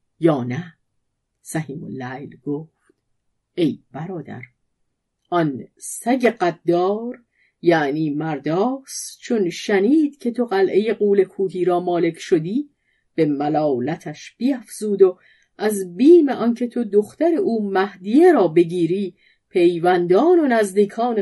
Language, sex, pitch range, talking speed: Persian, female, 155-230 Hz, 105 wpm